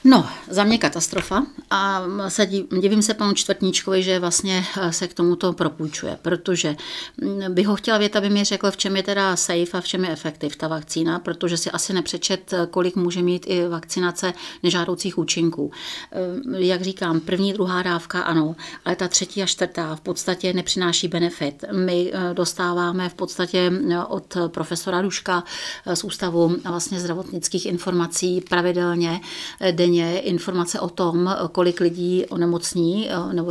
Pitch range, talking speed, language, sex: 170-195 Hz, 145 wpm, Czech, female